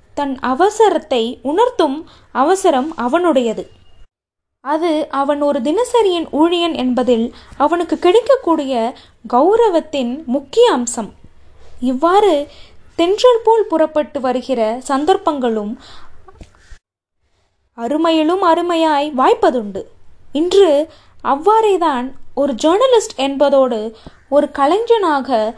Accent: native